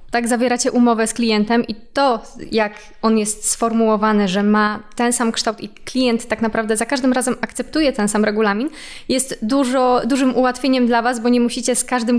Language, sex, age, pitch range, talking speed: Polish, female, 20-39, 205-230 Hz, 185 wpm